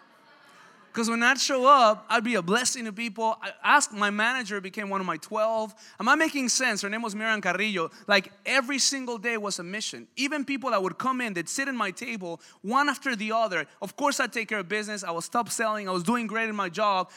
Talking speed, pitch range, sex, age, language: 245 wpm, 180-235 Hz, male, 20-39, English